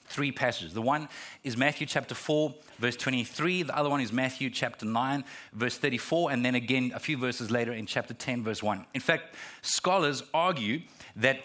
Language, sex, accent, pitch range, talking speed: English, male, Australian, 135-180 Hz, 190 wpm